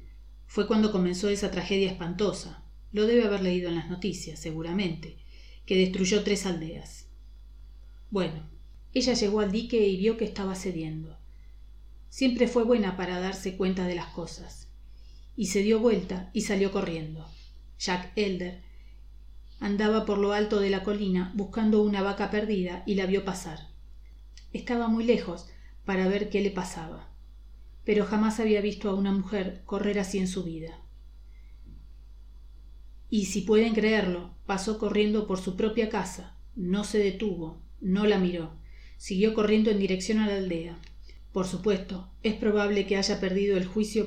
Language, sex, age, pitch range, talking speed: Spanish, female, 40-59, 175-210 Hz, 155 wpm